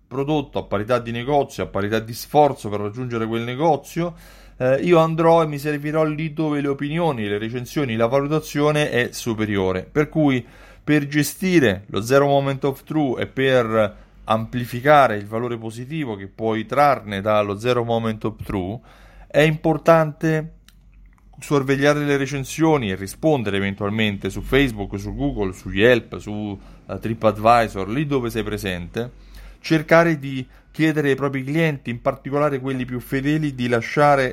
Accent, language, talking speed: native, Italian, 150 wpm